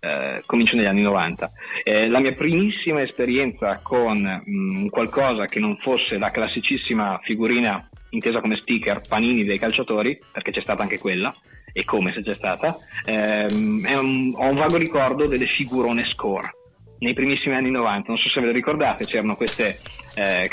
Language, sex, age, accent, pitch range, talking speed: Italian, male, 20-39, native, 105-130 Hz, 170 wpm